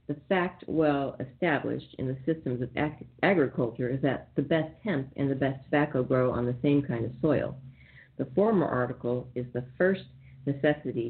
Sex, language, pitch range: female, English, 125-170 Hz